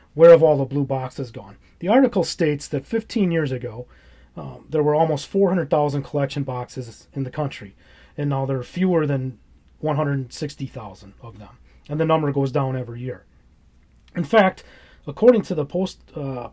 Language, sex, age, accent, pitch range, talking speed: English, male, 30-49, American, 125-165 Hz, 165 wpm